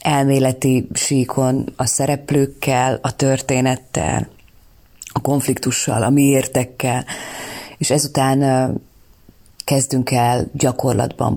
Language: Hungarian